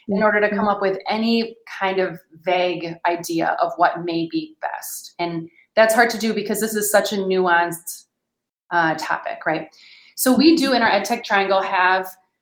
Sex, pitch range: female, 185-230 Hz